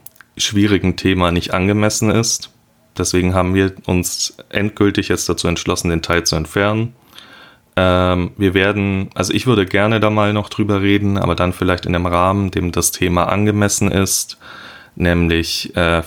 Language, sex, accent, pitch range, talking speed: German, male, German, 85-105 Hz, 155 wpm